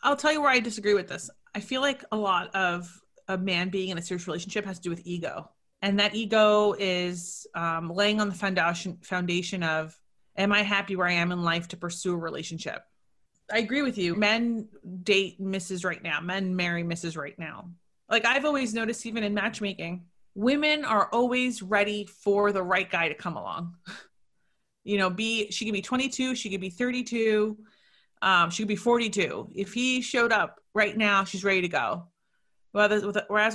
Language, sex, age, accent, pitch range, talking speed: English, female, 30-49, American, 180-220 Hz, 190 wpm